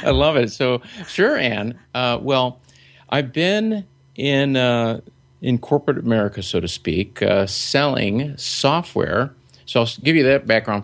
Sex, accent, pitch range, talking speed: male, American, 105-130 Hz, 150 wpm